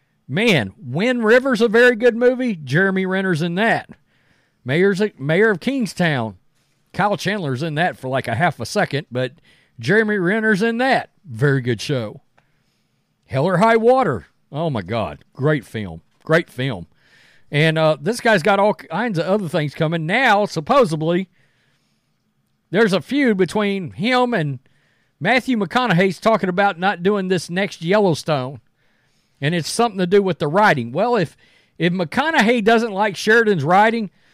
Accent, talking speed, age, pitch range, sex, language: American, 150 wpm, 40-59, 140-210 Hz, male, English